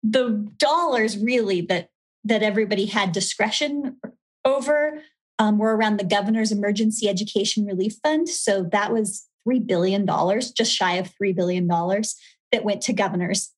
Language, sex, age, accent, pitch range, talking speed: English, female, 30-49, American, 195-225 Hz, 150 wpm